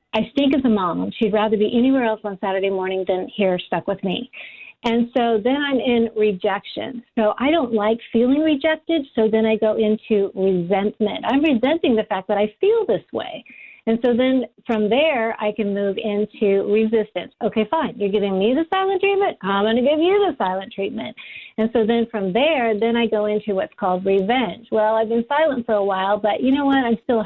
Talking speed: 210 wpm